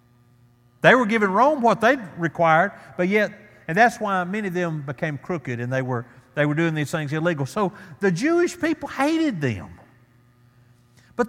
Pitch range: 130-205 Hz